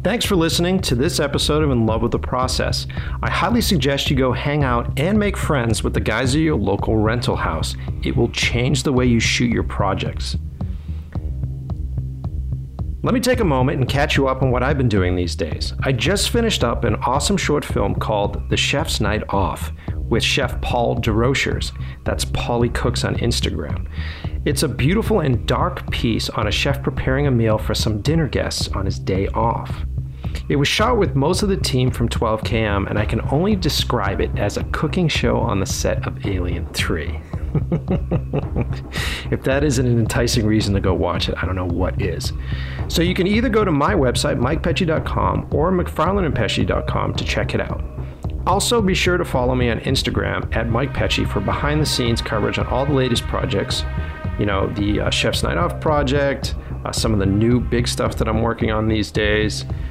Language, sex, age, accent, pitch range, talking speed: English, male, 40-59, American, 80-130 Hz, 195 wpm